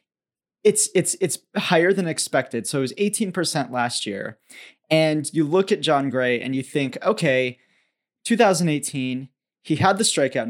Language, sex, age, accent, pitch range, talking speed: English, male, 20-39, American, 130-175 Hz, 160 wpm